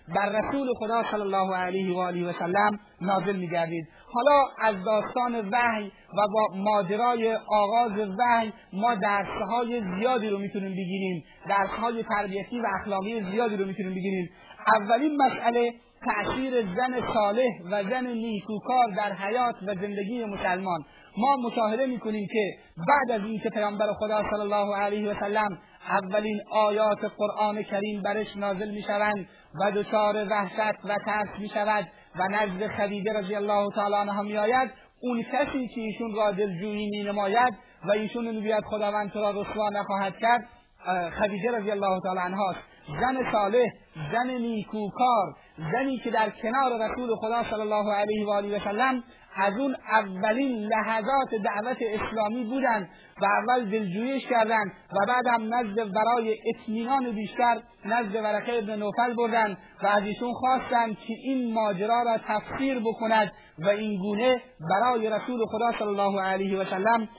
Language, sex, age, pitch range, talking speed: Persian, male, 30-49, 205-235 Hz, 145 wpm